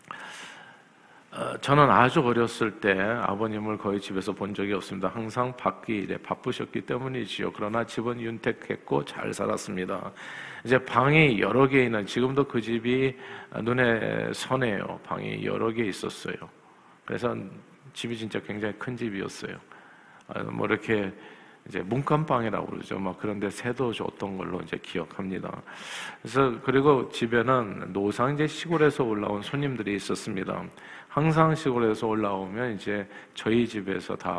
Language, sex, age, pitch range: Korean, male, 50-69, 100-130 Hz